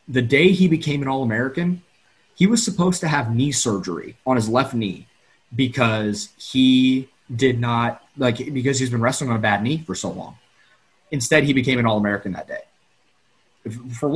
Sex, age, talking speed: male, 30-49, 175 wpm